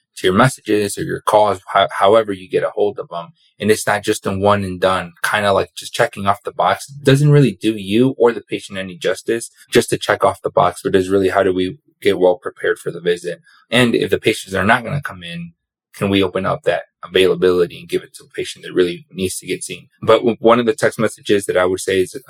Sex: male